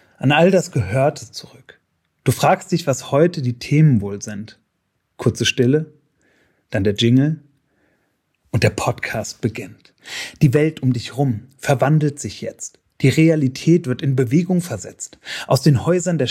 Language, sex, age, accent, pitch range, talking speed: German, male, 30-49, German, 125-170 Hz, 150 wpm